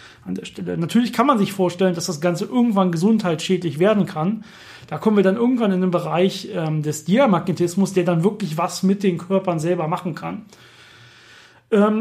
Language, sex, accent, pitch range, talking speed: German, male, German, 165-205 Hz, 185 wpm